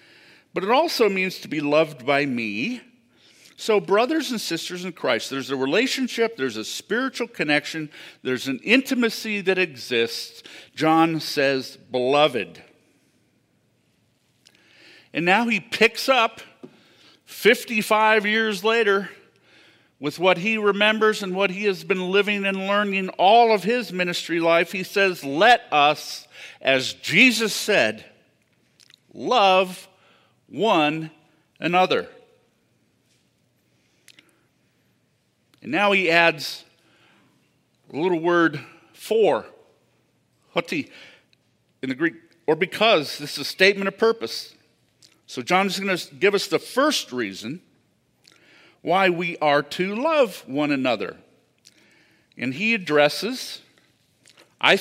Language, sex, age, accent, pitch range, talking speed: English, male, 50-69, American, 150-215 Hz, 115 wpm